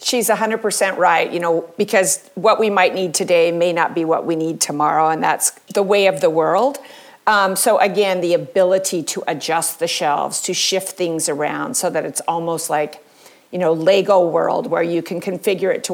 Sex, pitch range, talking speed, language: female, 165-210 Hz, 205 wpm, English